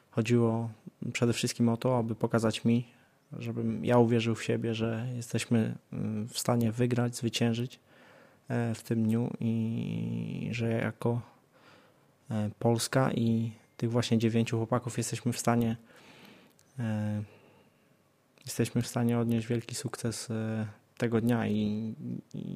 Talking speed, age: 115 wpm, 20-39